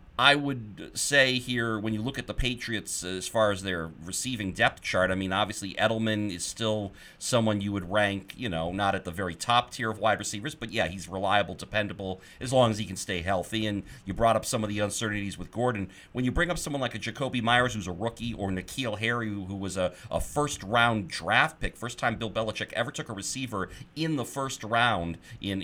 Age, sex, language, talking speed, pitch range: 40-59, male, English, 225 wpm, 100-120 Hz